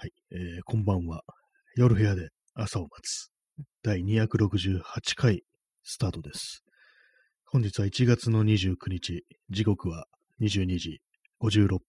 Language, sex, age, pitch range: Japanese, male, 30-49, 95-120 Hz